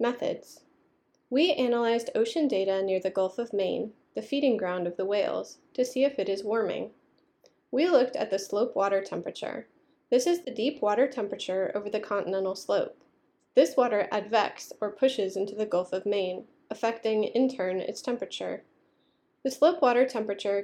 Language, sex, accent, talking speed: English, female, American, 170 wpm